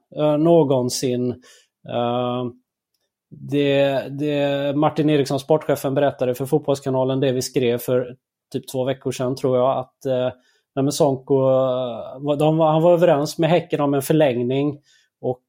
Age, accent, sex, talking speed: 30-49, native, male, 130 wpm